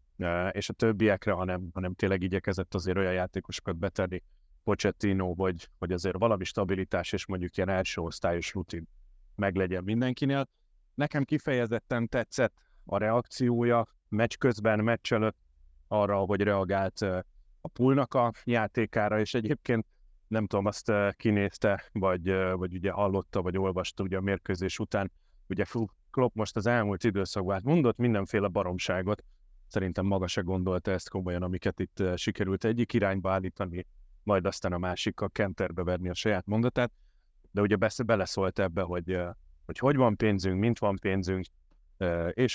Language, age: Hungarian, 30-49